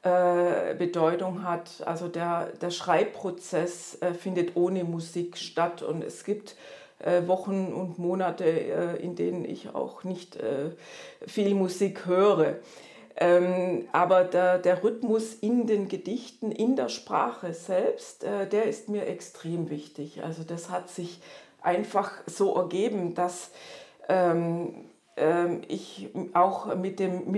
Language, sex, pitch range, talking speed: German, female, 175-210 Hz, 115 wpm